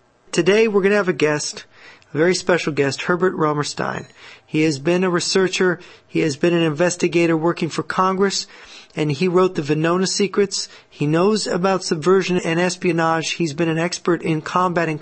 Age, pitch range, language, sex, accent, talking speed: 40-59, 160-185 Hz, English, male, American, 175 wpm